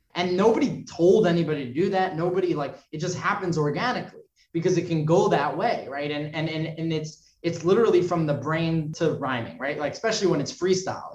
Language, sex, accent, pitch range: English, male, American, 130-165 Hz